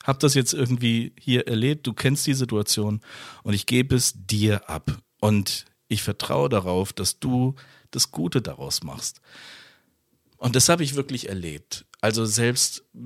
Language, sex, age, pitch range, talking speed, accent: German, male, 50-69, 100-135 Hz, 155 wpm, German